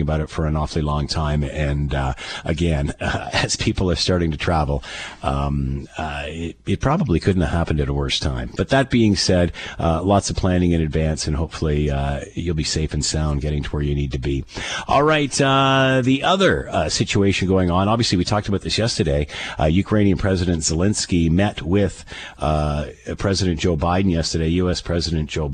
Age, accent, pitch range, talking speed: 50-69, American, 75-95 Hz, 195 wpm